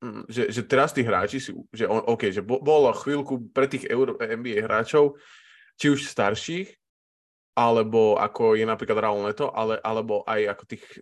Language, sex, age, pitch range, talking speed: Slovak, male, 20-39, 105-130 Hz, 165 wpm